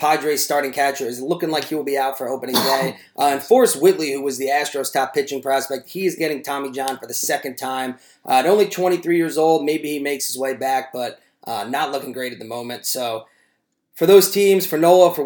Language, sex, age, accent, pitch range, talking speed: English, male, 30-49, American, 130-155 Hz, 235 wpm